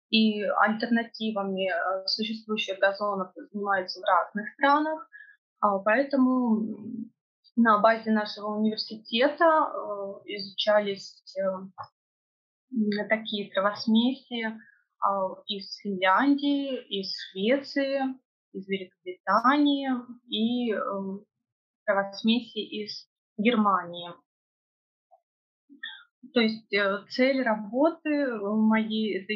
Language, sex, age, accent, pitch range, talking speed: Russian, female, 20-39, native, 205-265 Hz, 65 wpm